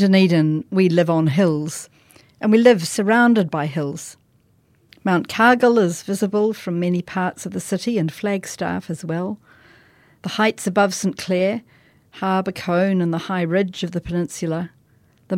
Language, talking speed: English, 160 wpm